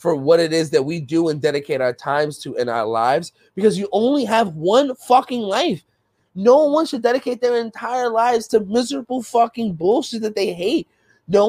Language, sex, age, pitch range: English, male, 20-39, 175-240 Hz